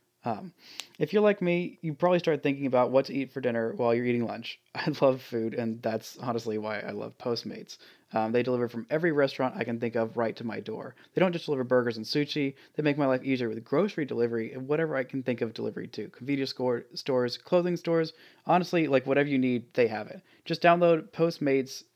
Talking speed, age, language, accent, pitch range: 220 wpm, 20-39, English, American, 120-155 Hz